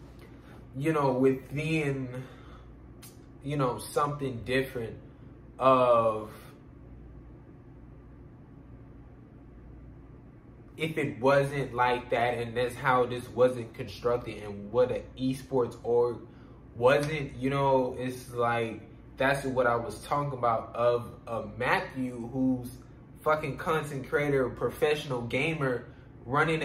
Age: 20-39